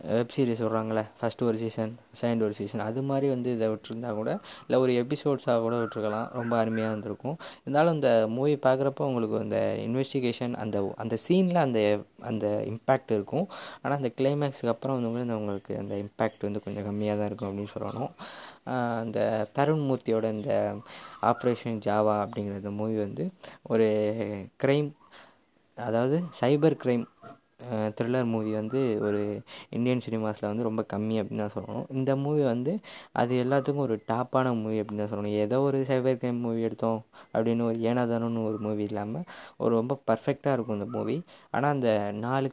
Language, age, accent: Tamil, 20-39, native